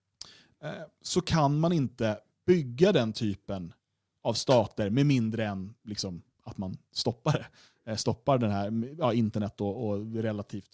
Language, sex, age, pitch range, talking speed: Swedish, male, 30-49, 110-155 Hz, 140 wpm